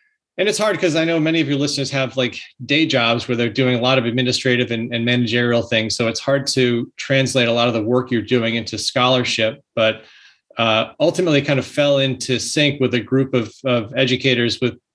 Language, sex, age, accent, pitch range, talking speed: English, male, 30-49, American, 115-135 Hz, 215 wpm